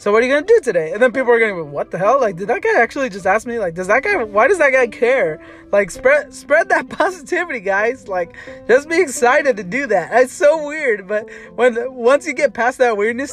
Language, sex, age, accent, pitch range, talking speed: English, male, 20-39, American, 175-235 Hz, 265 wpm